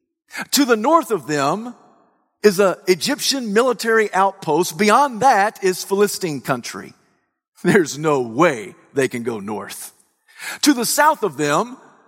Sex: male